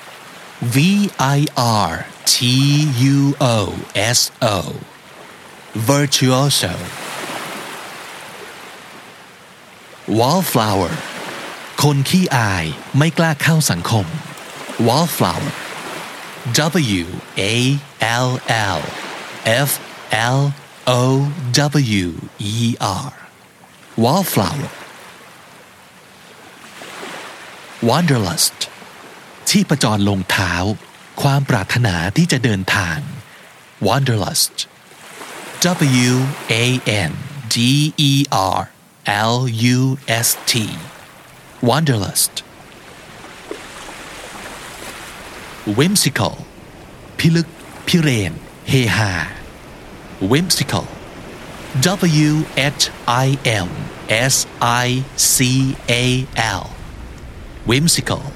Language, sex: Thai, male